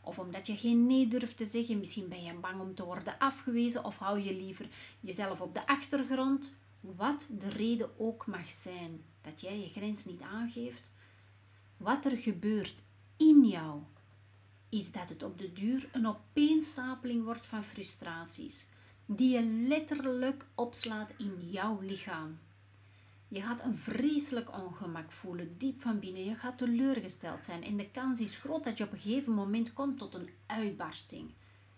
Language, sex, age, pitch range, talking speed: Dutch, female, 40-59, 170-240 Hz, 165 wpm